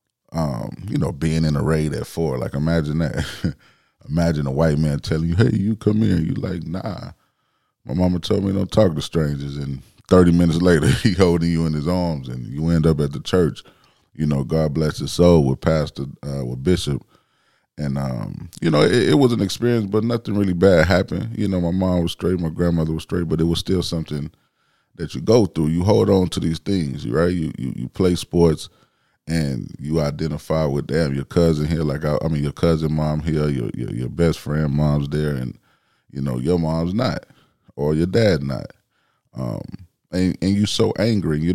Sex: male